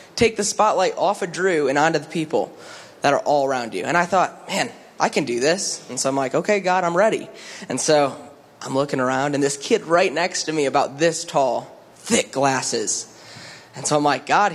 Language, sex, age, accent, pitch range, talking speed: English, male, 20-39, American, 145-200 Hz, 220 wpm